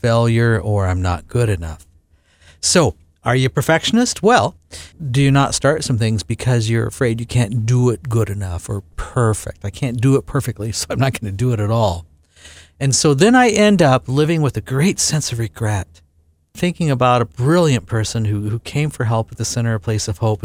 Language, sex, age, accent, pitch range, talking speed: English, male, 50-69, American, 90-140 Hz, 215 wpm